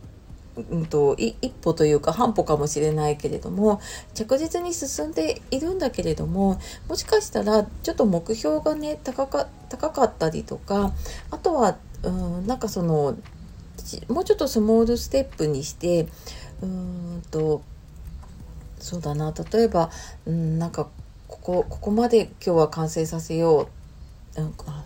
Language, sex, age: Japanese, female, 40-59